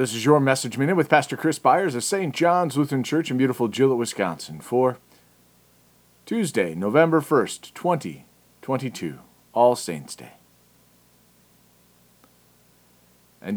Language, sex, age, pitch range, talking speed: English, male, 40-59, 105-150 Hz, 120 wpm